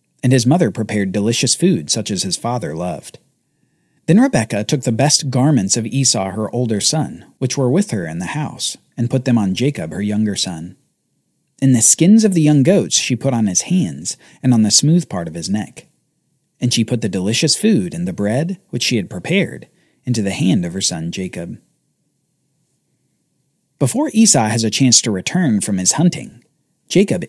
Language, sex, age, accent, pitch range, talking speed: English, male, 40-59, American, 115-170 Hz, 195 wpm